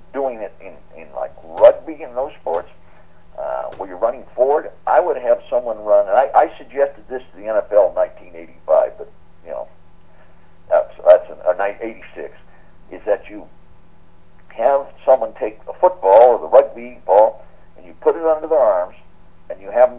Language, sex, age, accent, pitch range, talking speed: English, male, 60-79, American, 85-130 Hz, 175 wpm